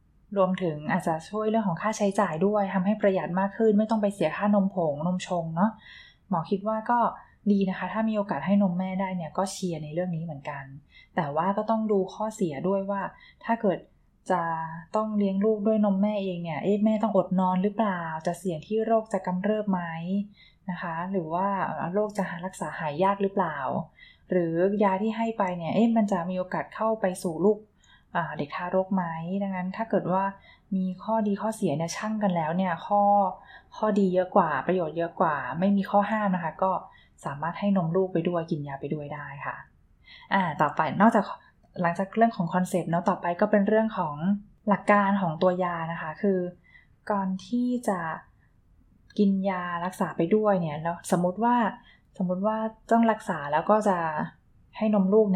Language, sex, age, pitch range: Thai, female, 20-39, 175-205 Hz